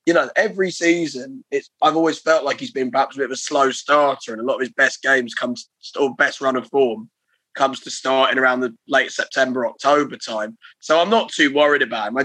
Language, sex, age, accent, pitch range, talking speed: English, male, 20-39, British, 125-150 Hz, 235 wpm